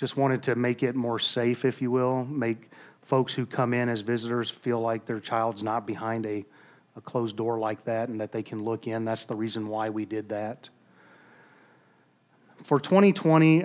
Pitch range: 110-125 Hz